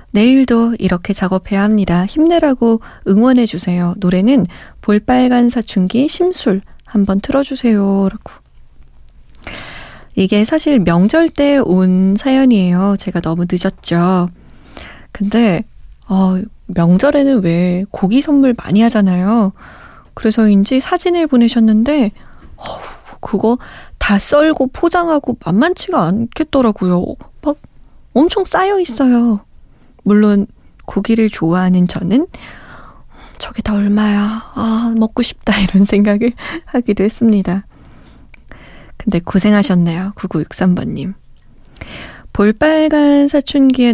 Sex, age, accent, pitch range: female, 20-39, native, 190-260 Hz